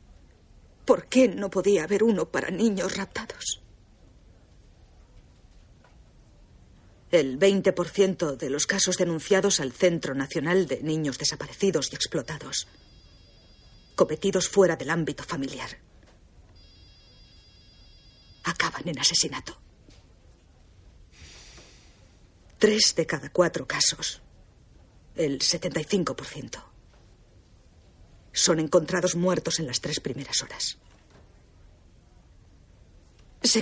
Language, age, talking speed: Spanish, 40-59, 85 wpm